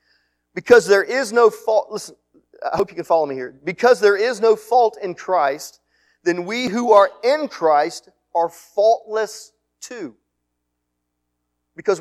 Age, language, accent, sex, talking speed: 40-59, English, American, male, 150 wpm